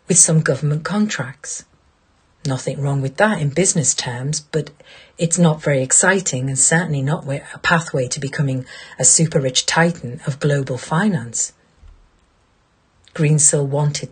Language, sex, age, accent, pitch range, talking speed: English, female, 40-59, British, 130-170 Hz, 135 wpm